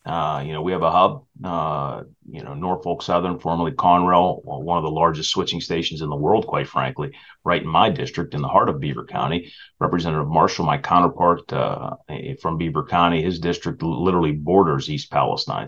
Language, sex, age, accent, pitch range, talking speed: English, male, 30-49, American, 80-95 Hz, 190 wpm